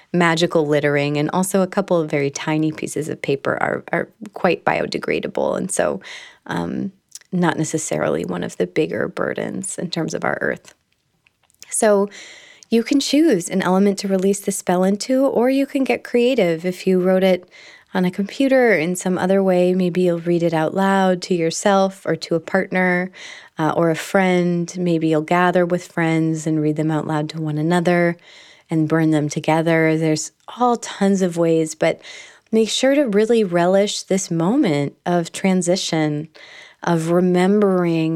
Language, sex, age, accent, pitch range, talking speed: English, female, 20-39, American, 160-195 Hz, 170 wpm